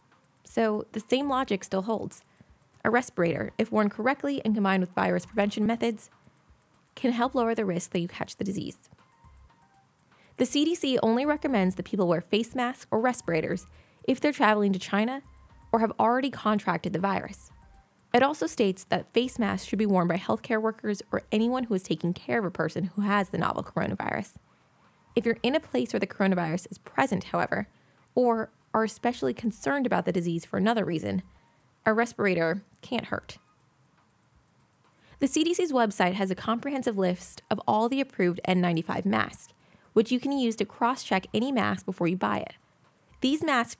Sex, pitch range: female, 185-240 Hz